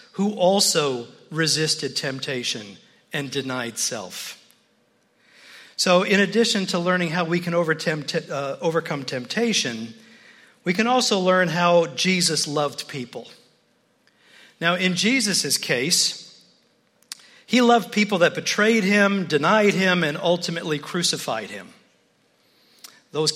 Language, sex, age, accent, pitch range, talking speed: English, male, 50-69, American, 150-195 Hz, 110 wpm